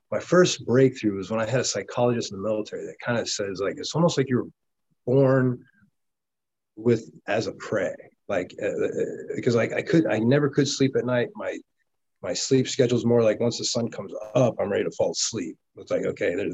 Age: 30-49